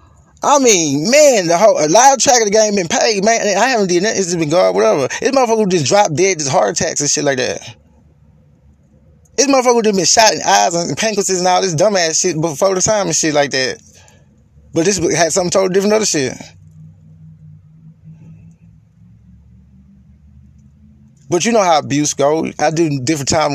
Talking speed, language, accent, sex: 195 wpm, English, American, male